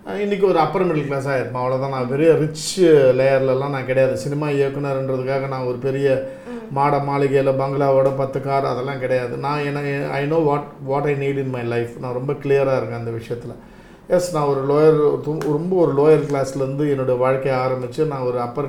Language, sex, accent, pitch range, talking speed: Tamil, male, native, 130-160 Hz, 175 wpm